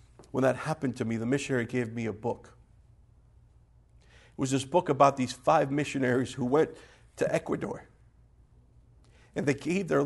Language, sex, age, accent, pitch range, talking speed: English, male, 50-69, American, 130-190 Hz, 160 wpm